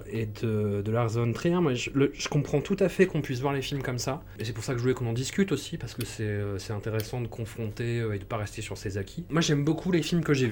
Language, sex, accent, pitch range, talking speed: French, male, French, 110-140 Hz, 295 wpm